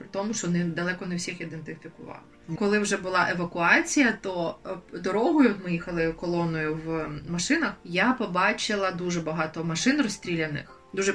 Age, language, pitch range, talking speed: 20-39, Ukrainian, 170-210 Hz, 135 wpm